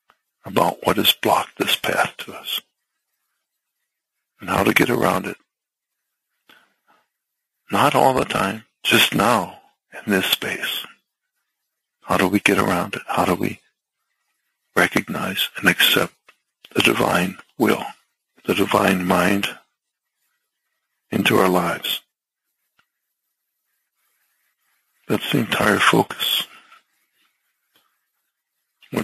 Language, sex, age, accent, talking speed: English, male, 60-79, American, 100 wpm